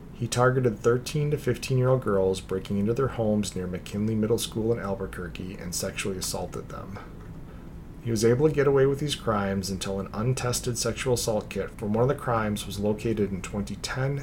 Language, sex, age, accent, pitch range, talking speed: English, male, 30-49, American, 100-125 Hz, 185 wpm